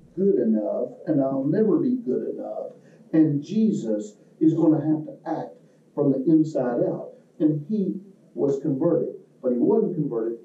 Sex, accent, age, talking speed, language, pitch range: male, American, 50-69, 160 wpm, English, 160-220 Hz